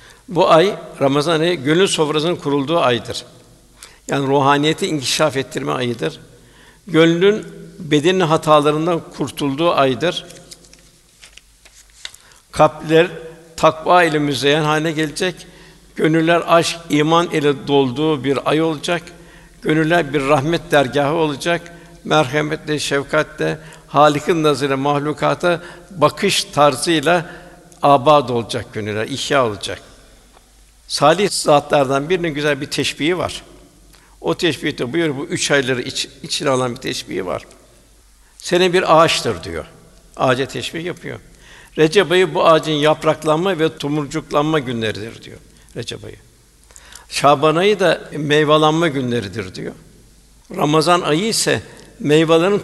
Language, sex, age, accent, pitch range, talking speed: Turkish, male, 60-79, native, 140-170 Hz, 105 wpm